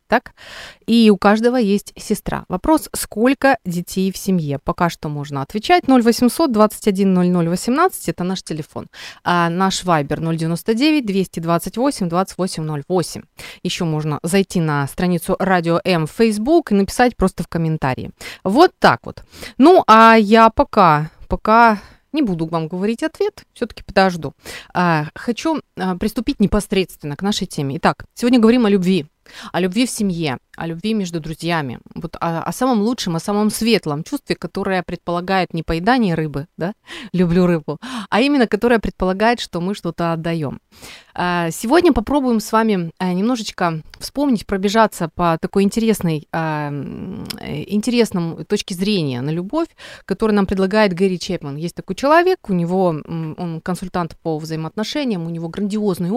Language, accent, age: Ukrainian, native, 30-49